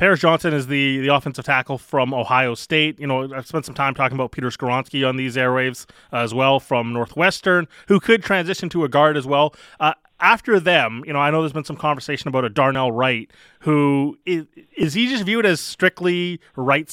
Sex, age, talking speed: male, 20-39, 215 wpm